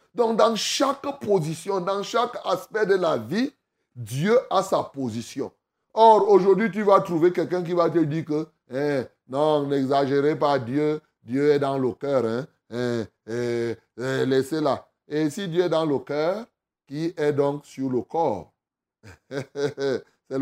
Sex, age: male, 30-49